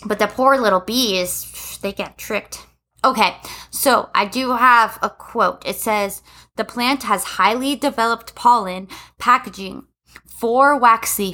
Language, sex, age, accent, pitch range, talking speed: English, female, 20-39, American, 195-235 Hz, 140 wpm